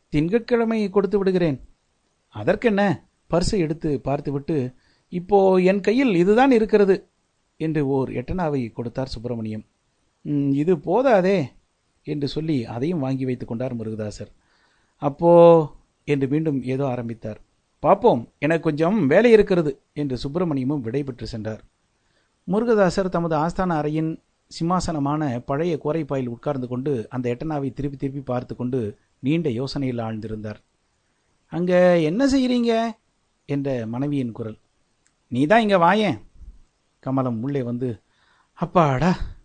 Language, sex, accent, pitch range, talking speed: Tamil, male, native, 125-180 Hz, 110 wpm